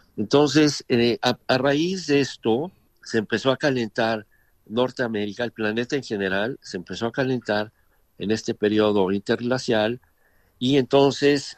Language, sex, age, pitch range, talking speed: Spanish, male, 50-69, 100-125 Hz, 135 wpm